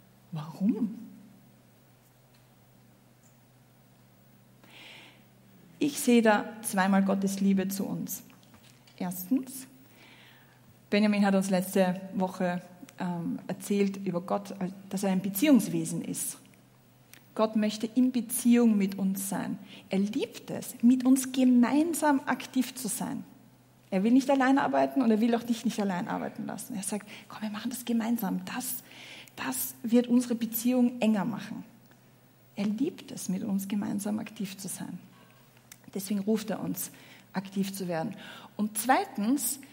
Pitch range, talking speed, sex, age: 195-240 Hz, 130 wpm, female, 40-59